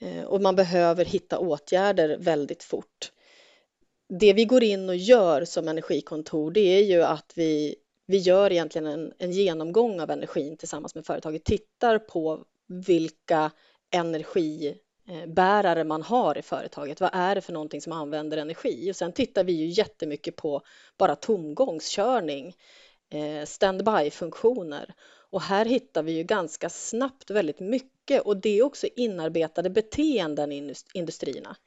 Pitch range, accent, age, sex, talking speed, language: 160-220 Hz, native, 30-49, female, 140 wpm, Swedish